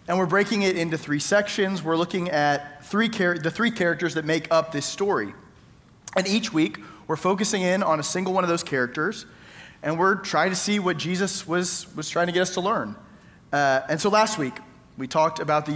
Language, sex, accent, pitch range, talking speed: English, male, American, 155-190 Hz, 215 wpm